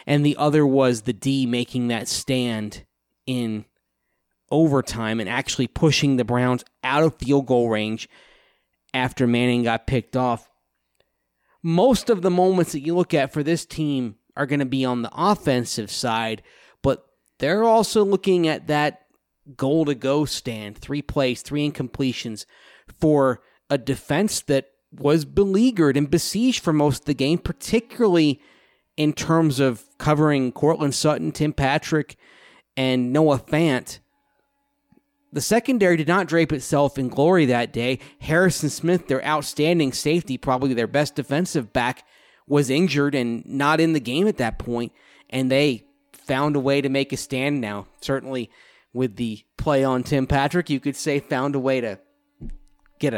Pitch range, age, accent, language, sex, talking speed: 125-160 Hz, 30-49, American, English, male, 155 wpm